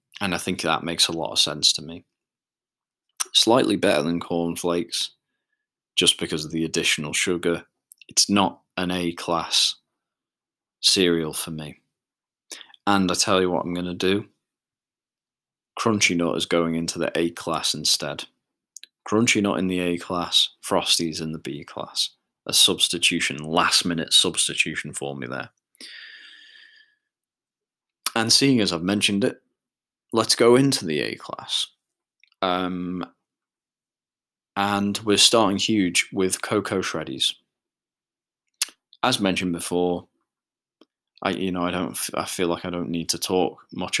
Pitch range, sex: 85-100 Hz, male